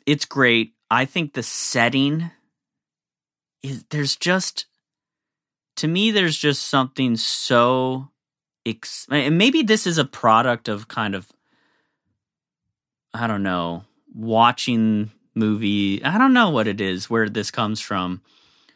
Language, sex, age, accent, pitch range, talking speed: English, male, 30-49, American, 100-140 Hz, 130 wpm